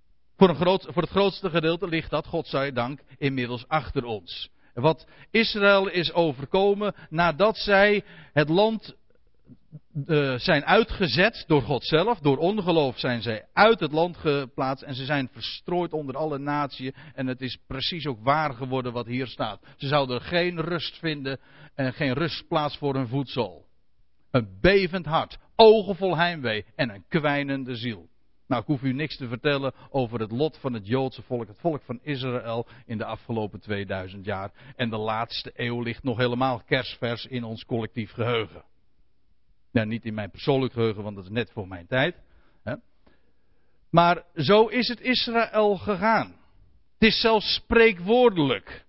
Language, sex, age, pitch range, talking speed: Dutch, male, 50-69, 120-170 Hz, 165 wpm